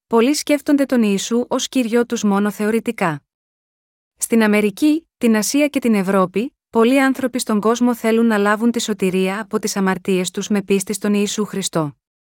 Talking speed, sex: 165 wpm, female